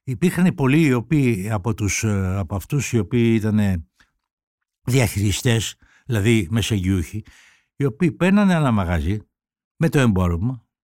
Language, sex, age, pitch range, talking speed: Greek, male, 60-79, 110-175 Hz, 105 wpm